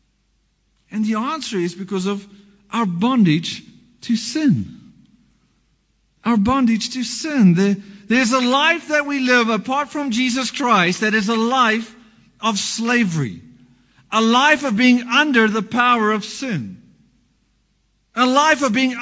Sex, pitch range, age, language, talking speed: male, 210-260 Hz, 50-69, English, 135 wpm